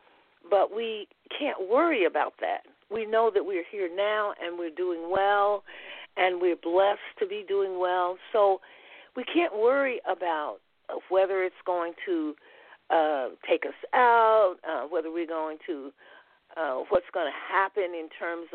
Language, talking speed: English, 155 wpm